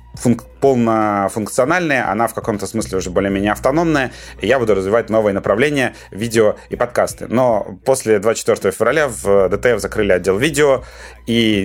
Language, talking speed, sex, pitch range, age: Russian, 145 wpm, male, 95-115 Hz, 30-49